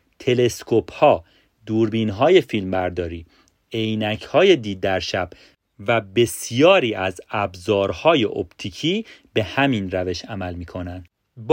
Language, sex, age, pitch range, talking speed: Persian, male, 40-59, 100-165 Hz, 95 wpm